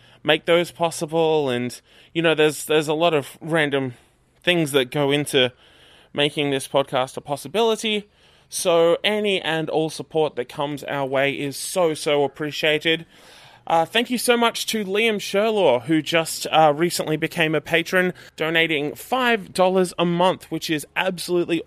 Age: 20-39